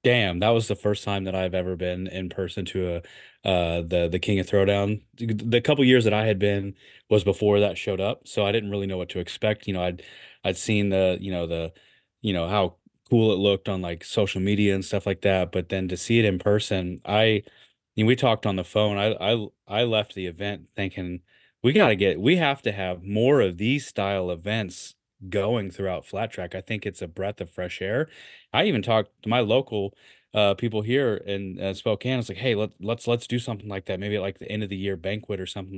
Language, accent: English, American